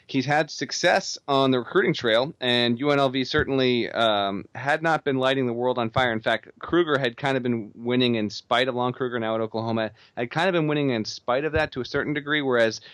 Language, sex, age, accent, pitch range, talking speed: English, male, 30-49, American, 115-140 Hz, 225 wpm